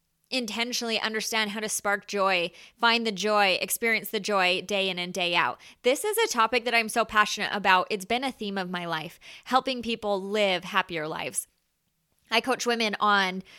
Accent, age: American, 20-39